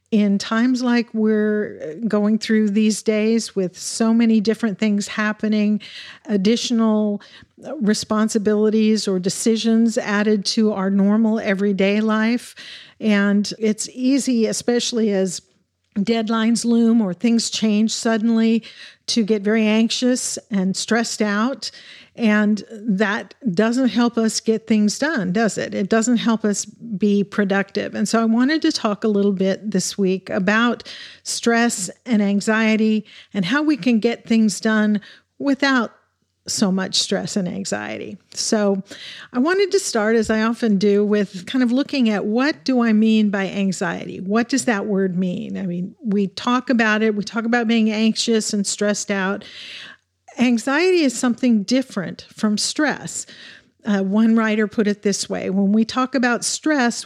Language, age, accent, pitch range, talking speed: English, 50-69, American, 205-235 Hz, 150 wpm